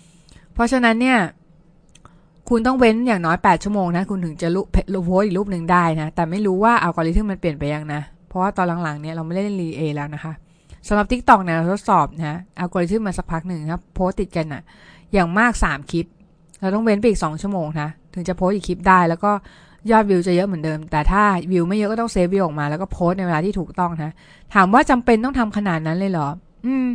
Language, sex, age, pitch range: Thai, female, 20-39, 165-210 Hz